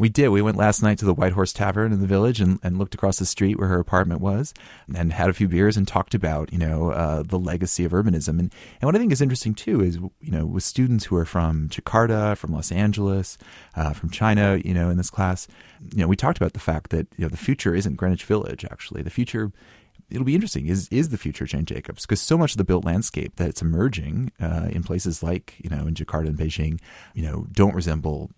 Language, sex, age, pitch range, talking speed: English, male, 30-49, 80-100 Hz, 245 wpm